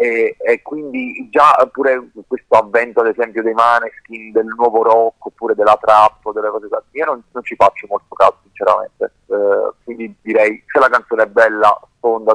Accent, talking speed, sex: native, 185 wpm, male